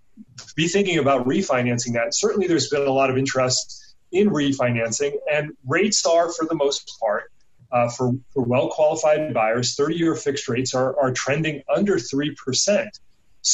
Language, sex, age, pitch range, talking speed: English, male, 40-59, 125-150 Hz, 150 wpm